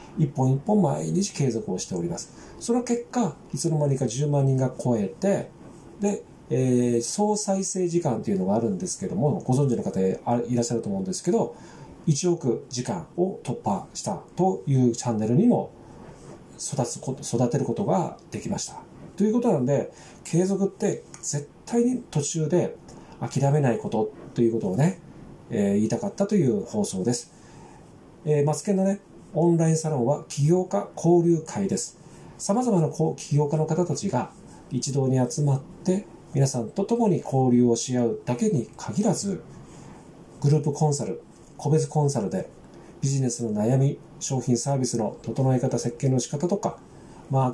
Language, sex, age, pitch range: Japanese, male, 40-59, 125-185 Hz